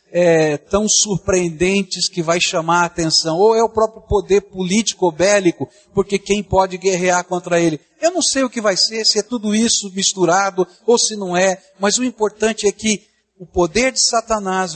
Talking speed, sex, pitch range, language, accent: 185 wpm, male, 185-225 Hz, Portuguese, Brazilian